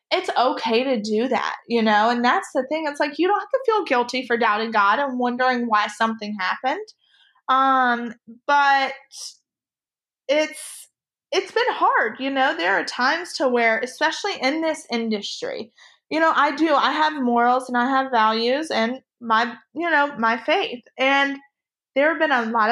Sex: female